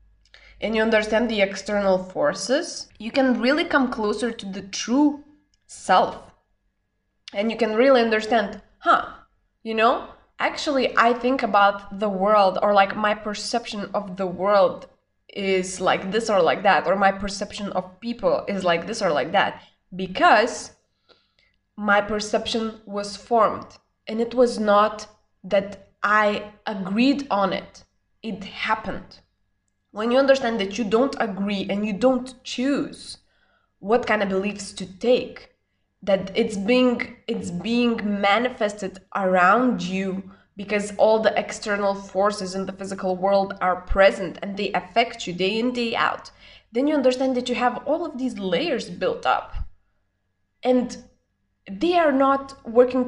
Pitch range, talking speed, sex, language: 195-245 Hz, 145 wpm, female, English